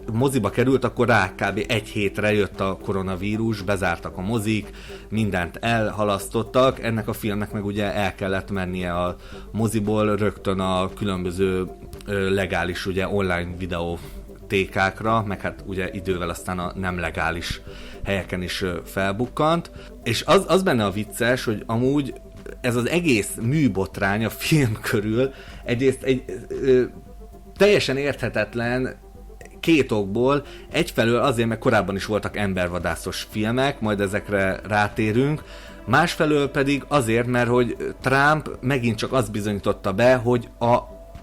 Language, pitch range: Hungarian, 95-125 Hz